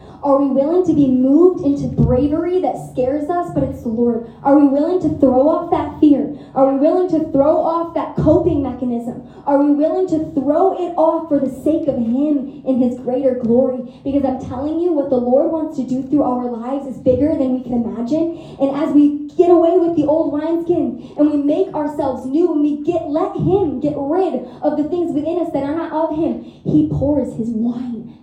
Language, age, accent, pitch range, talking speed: English, 10-29, American, 275-355 Hz, 220 wpm